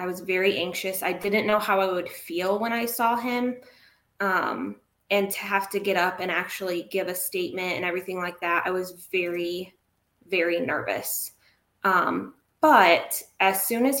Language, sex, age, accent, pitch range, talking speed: English, female, 20-39, American, 175-200 Hz, 175 wpm